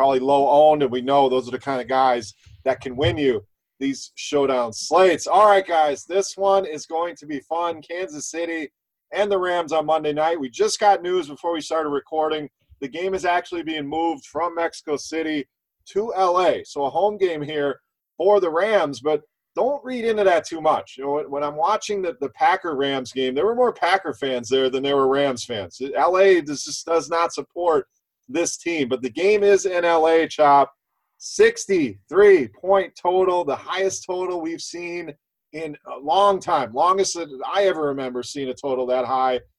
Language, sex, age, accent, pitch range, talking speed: English, male, 30-49, American, 140-185 Hz, 190 wpm